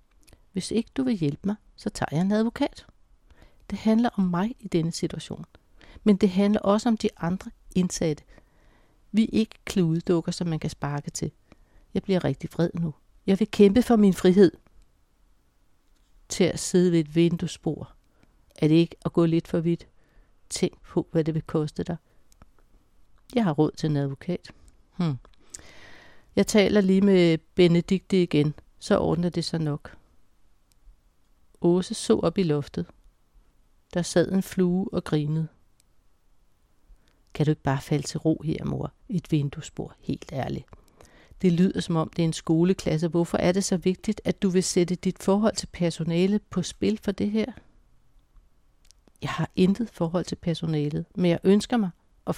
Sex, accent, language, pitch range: female, native, Danish, 155-195 Hz